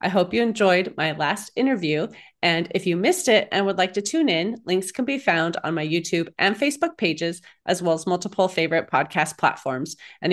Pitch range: 165-210 Hz